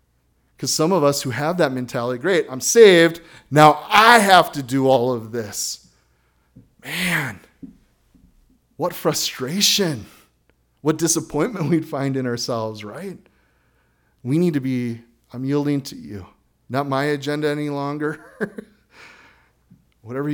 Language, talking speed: English, 125 wpm